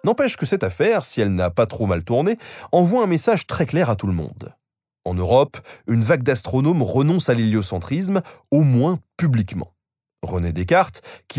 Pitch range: 100-160 Hz